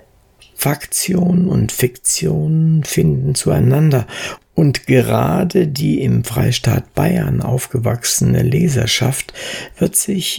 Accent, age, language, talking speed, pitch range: German, 60-79, German, 85 wpm, 120-170 Hz